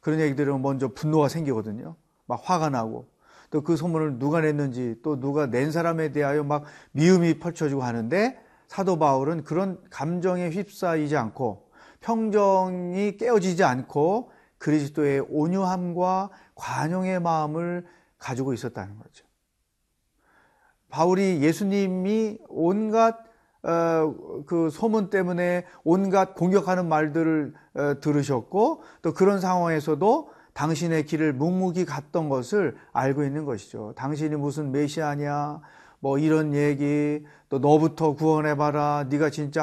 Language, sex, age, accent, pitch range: Korean, male, 40-59, native, 145-180 Hz